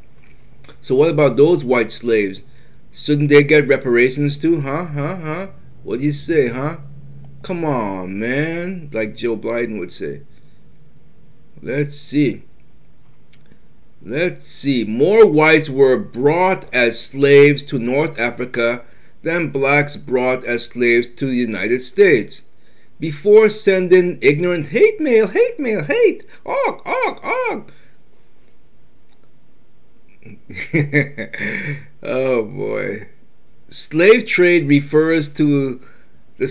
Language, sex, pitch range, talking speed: English, male, 130-170 Hz, 110 wpm